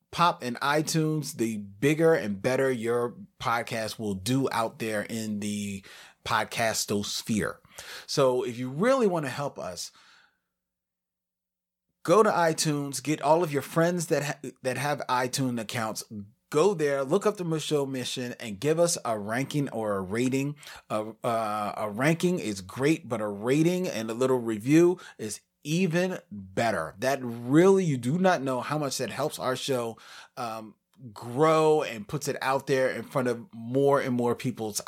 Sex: male